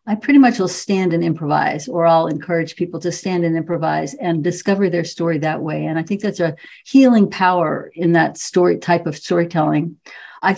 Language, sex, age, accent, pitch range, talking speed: English, female, 50-69, American, 170-215 Hz, 200 wpm